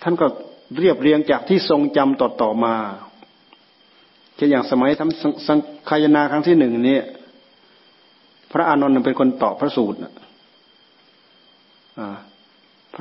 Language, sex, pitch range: Thai, male, 115-135 Hz